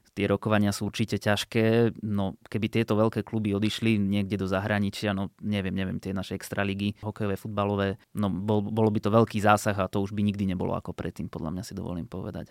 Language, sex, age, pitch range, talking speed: Slovak, male, 20-39, 95-105 Hz, 200 wpm